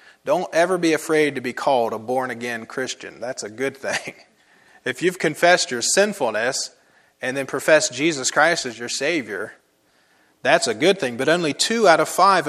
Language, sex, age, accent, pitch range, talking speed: English, male, 30-49, American, 130-175 Hz, 180 wpm